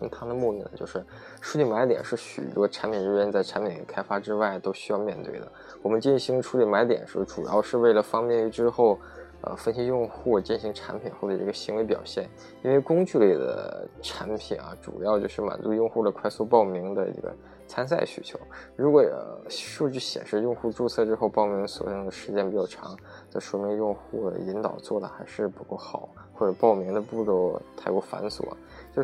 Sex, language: male, Chinese